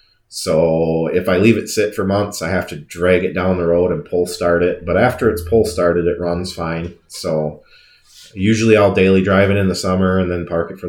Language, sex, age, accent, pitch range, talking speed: English, male, 30-49, American, 80-95 Hz, 230 wpm